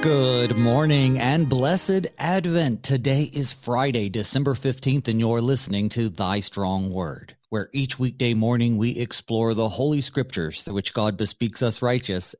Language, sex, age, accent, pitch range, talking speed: English, male, 40-59, American, 105-150 Hz, 155 wpm